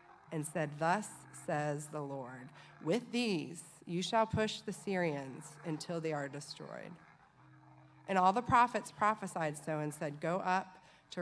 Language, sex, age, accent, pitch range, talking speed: English, female, 30-49, American, 145-185 Hz, 150 wpm